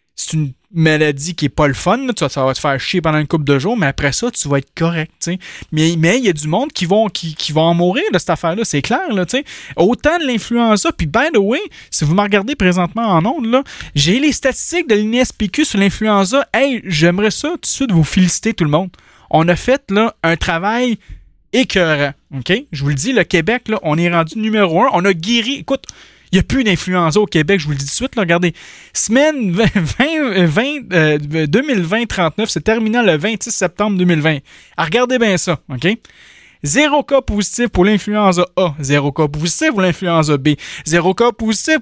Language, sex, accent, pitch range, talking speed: English, male, Canadian, 165-240 Hz, 220 wpm